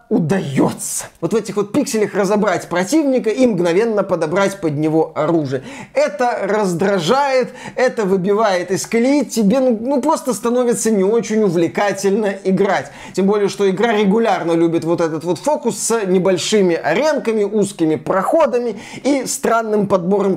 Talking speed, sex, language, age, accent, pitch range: 135 wpm, male, Russian, 20-39, native, 180-245 Hz